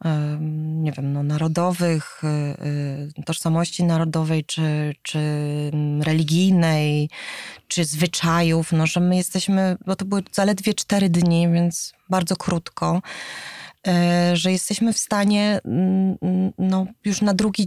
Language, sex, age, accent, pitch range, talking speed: Polish, female, 20-39, native, 170-190 Hz, 110 wpm